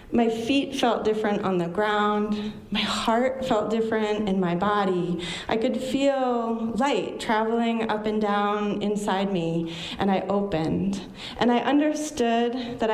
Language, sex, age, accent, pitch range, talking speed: English, female, 30-49, American, 190-250 Hz, 145 wpm